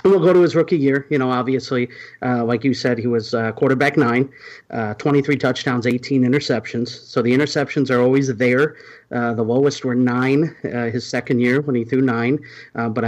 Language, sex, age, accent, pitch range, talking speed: English, male, 30-49, American, 125-165 Hz, 200 wpm